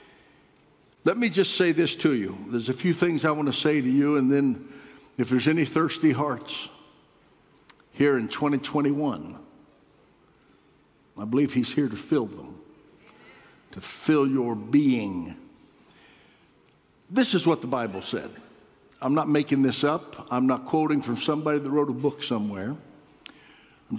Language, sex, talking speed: English, male, 150 wpm